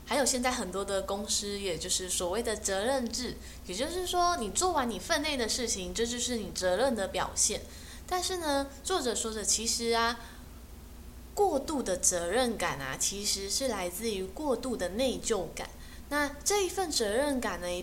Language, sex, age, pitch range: Chinese, female, 10-29, 200-275 Hz